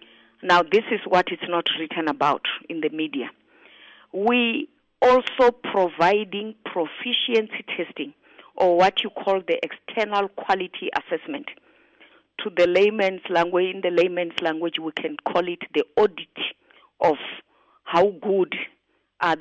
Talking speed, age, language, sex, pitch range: 130 wpm, 40-59, English, female, 170-240 Hz